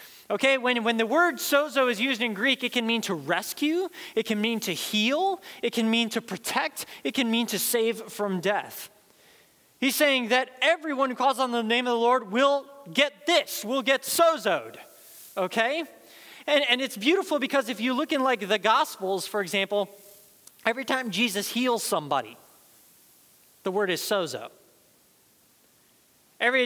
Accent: American